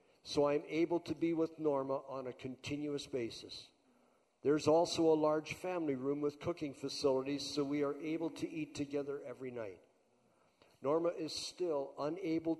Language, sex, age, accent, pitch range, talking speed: English, male, 50-69, American, 130-165 Hz, 155 wpm